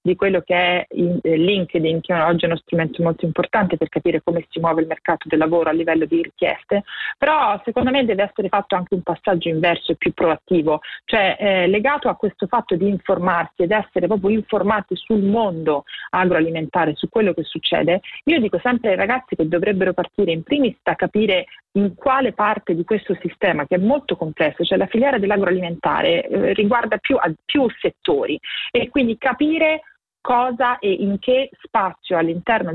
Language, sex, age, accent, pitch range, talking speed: Italian, female, 40-59, native, 170-215 Hz, 180 wpm